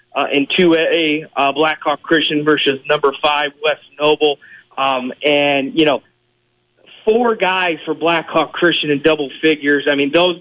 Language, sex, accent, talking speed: English, male, American, 150 wpm